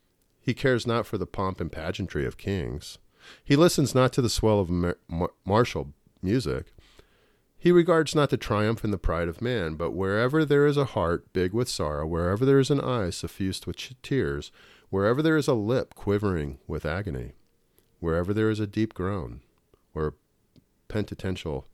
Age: 50-69